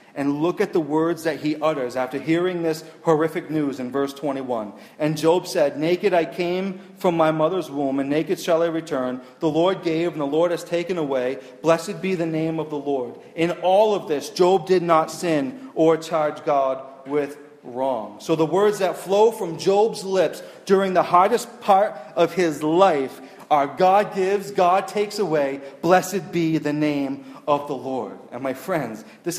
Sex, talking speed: male, 195 wpm